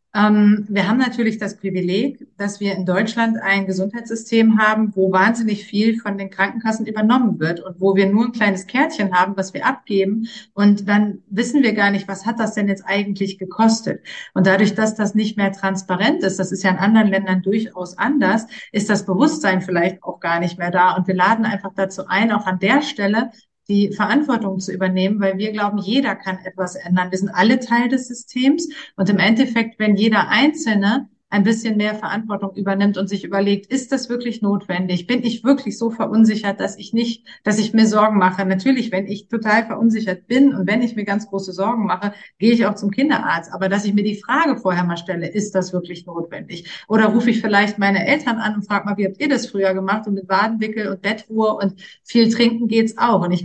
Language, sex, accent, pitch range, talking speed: German, female, German, 195-225 Hz, 210 wpm